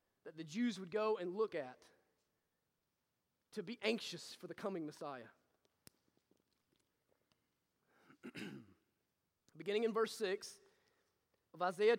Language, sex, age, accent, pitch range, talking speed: English, male, 30-49, American, 205-290 Hz, 105 wpm